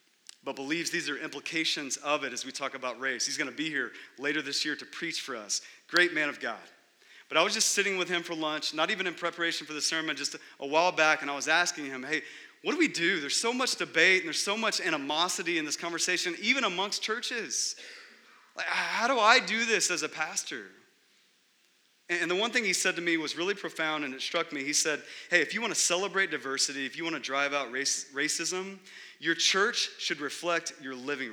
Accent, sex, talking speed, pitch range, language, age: American, male, 225 wpm, 150-200 Hz, English, 30-49